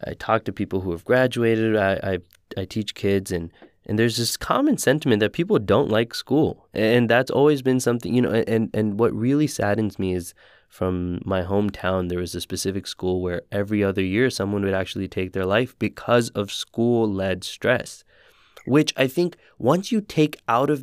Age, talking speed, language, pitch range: 20-39, 195 wpm, English, 95-130 Hz